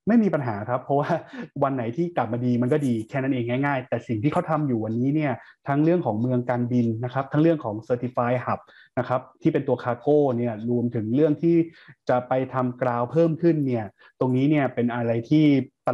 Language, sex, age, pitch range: Thai, male, 20-39, 120-150 Hz